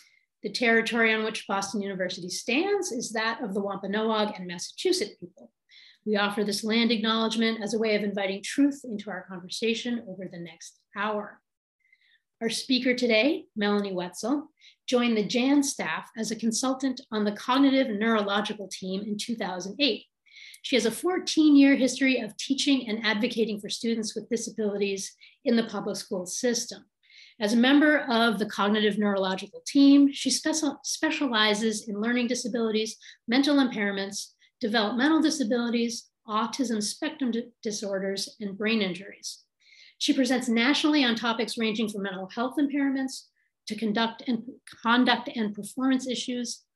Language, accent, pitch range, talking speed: English, American, 210-260 Hz, 140 wpm